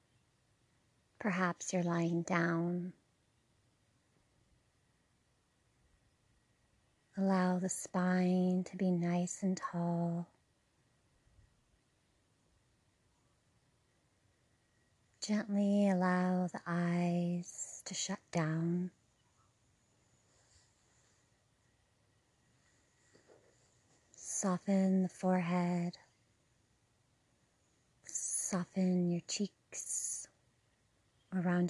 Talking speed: 50 wpm